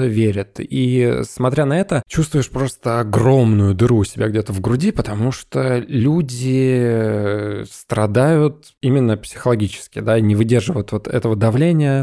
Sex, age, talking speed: male, 20-39, 130 wpm